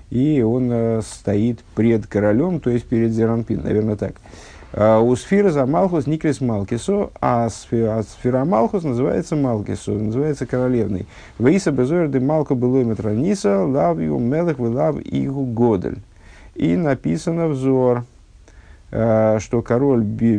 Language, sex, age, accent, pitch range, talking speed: Russian, male, 50-69, native, 100-135 Hz, 105 wpm